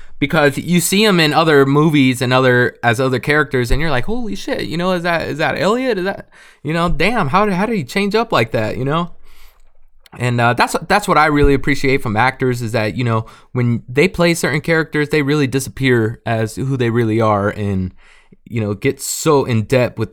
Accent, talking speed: American, 225 wpm